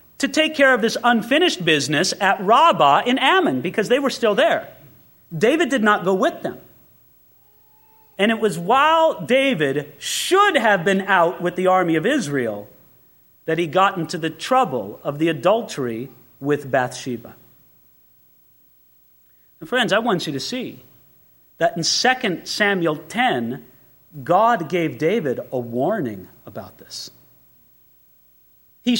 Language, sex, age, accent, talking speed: English, male, 40-59, American, 140 wpm